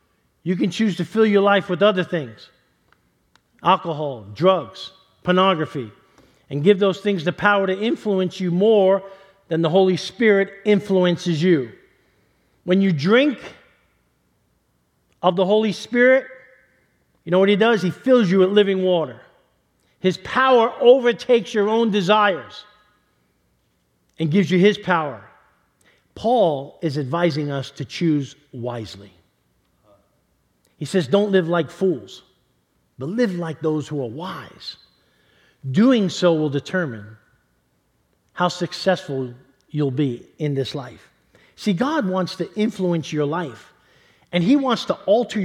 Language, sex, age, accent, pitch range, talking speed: English, male, 50-69, American, 150-200 Hz, 135 wpm